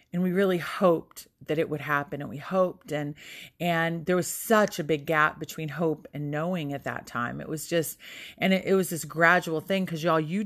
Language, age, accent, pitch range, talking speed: English, 30-49, American, 160-210 Hz, 225 wpm